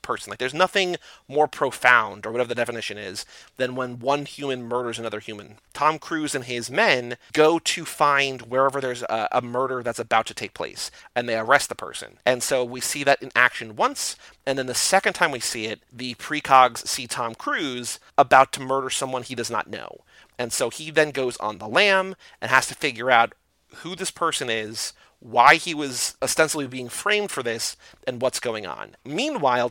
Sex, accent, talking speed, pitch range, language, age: male, American, 200 wpm, 120-160 Hz, English, 30-49